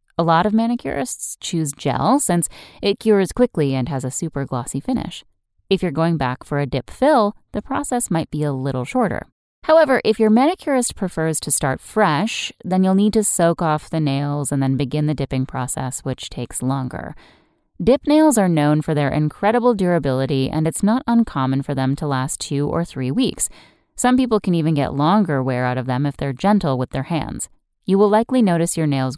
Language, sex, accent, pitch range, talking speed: English, female, American, 135-200 Hz, 200 wpm